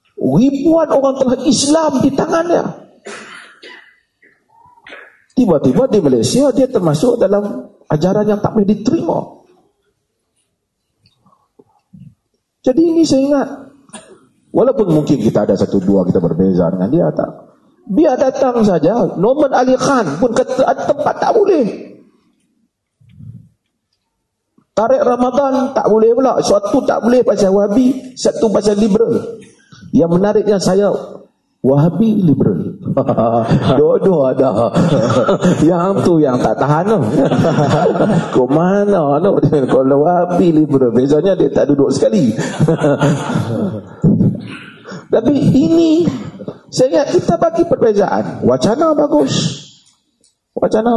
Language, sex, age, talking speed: Malay, male, 50-69, 105 wpm